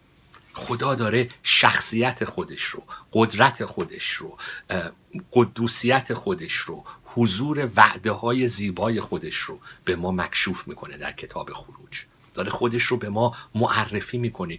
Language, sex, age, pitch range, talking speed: Persian, male, 50-69, 95-120 Hz, 130 wpm